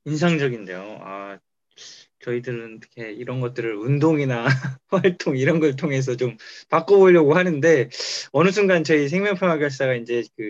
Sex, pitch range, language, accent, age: male, 130-195 Hz, Korean, native, 20-39